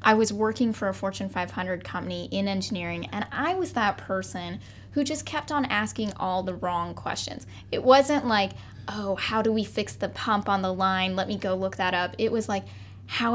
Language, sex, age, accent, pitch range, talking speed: English, female, 10-29, American, 180-220 Hz, 210 wpm